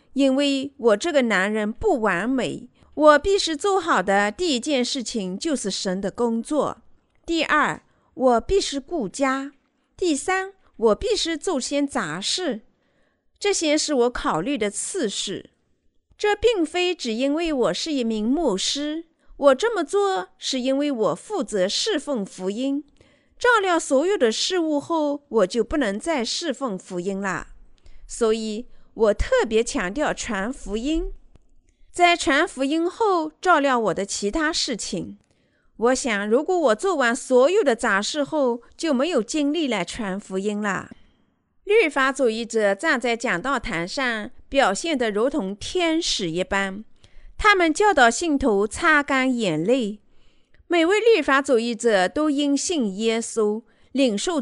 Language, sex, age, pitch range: Chinese, female, 50-69, 225-320 Hz